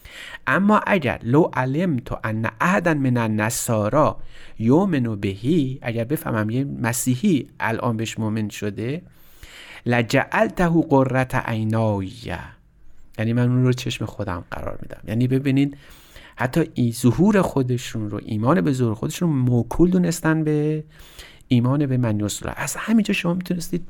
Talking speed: 130 wpm